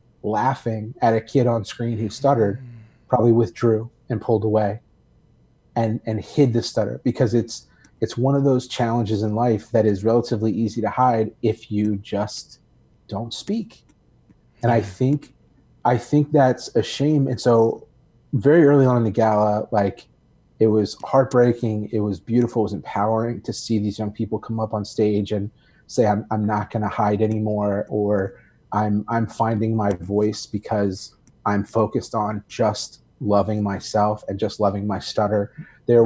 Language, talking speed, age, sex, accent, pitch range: English, 170 wpm, 30-49, male, American, 105-120 Hz